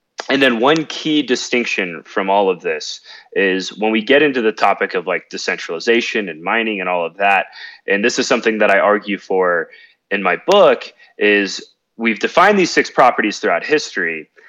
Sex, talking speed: male, 180 wpm